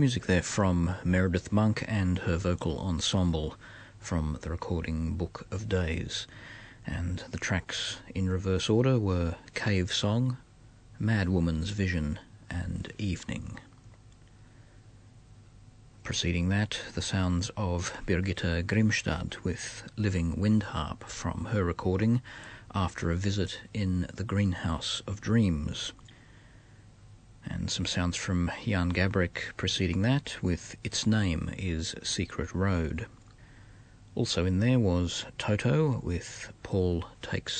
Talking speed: 110 wpm